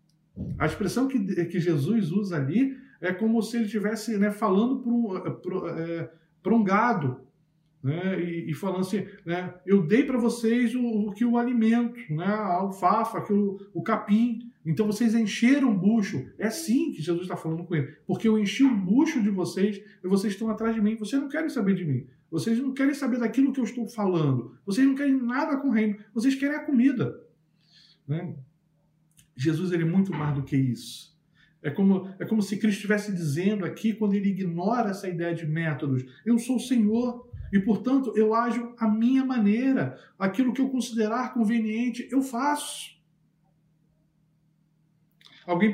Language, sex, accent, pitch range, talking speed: Portuguese, male, Brazilian, 165-240 Hz, 175 wpm